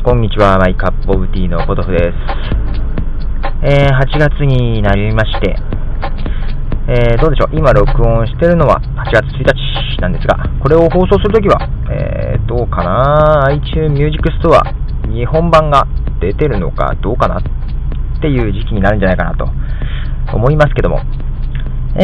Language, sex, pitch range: Japanese, male, 95-140 Hz